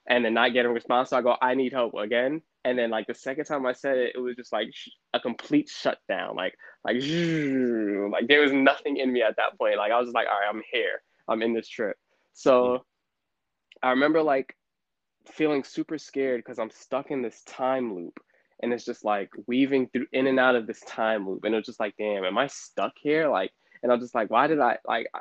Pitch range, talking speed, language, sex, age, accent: 110-130 Hz, 235 wpm, English, male, 10-29, American